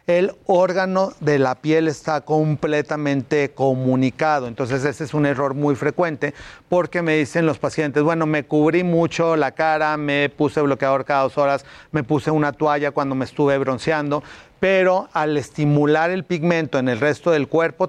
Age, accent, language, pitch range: 40-59, Mexican, Spanish, 135-155 Hz